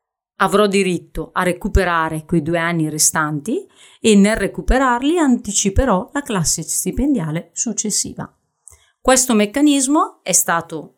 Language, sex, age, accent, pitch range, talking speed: Italian, female, 40-59, native, 165-230 Hz, 110 wpm